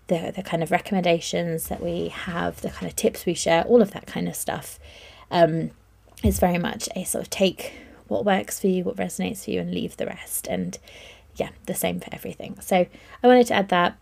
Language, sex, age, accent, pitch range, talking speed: English, female, 20-39, British, 175-210 Hz, 225 wpm